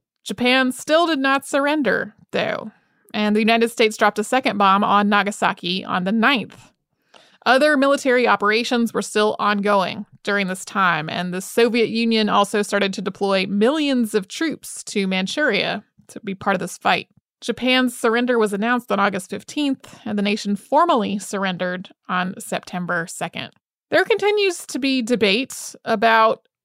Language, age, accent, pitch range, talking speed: English, 30-49, American, 205-245 Hz, 155 wpm